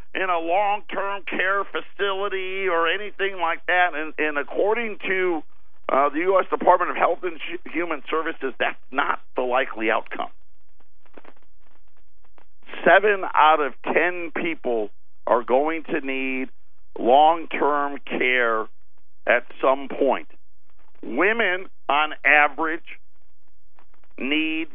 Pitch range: 150-205 Hz